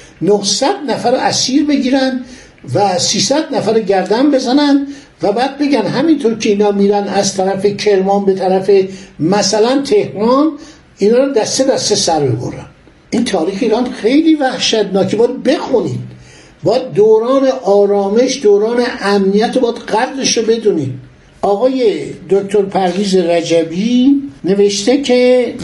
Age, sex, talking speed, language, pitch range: 60-79, male, 120 wpm, Persian, 185-250 Hz